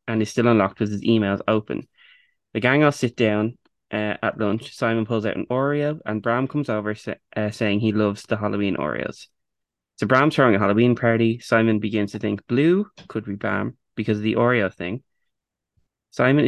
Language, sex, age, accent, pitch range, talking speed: English, male, 20-39, Irish, 105-120 Hz, 195 wpm